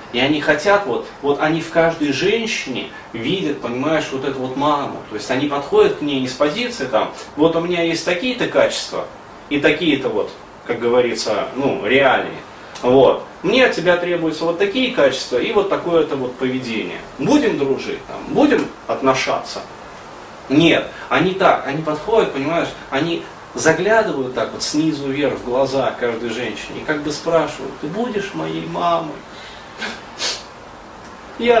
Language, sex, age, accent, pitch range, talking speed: Russian, male, 30-49, native, 140-210 Hz, 155 wpm